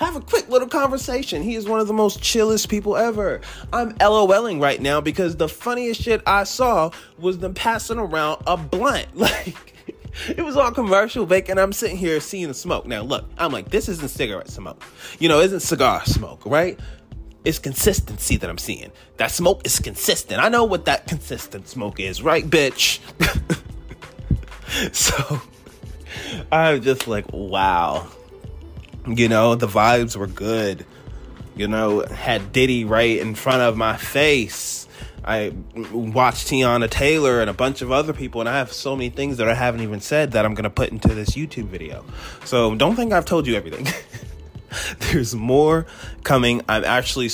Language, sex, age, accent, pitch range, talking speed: English, male, 20-39, American, 110-180 Hz, 175 wpm